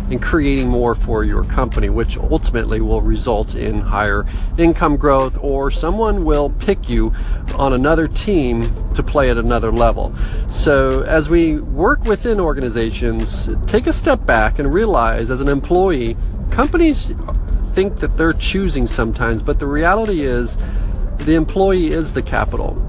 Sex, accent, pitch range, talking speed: male, American, 115-165 Hz, 150 wpm